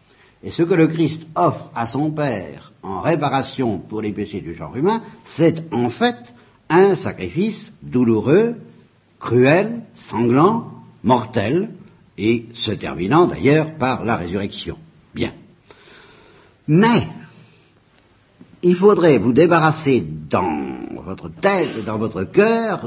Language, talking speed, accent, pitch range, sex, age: French, 120 wpm, French, 115-190 Hz, male, 60-79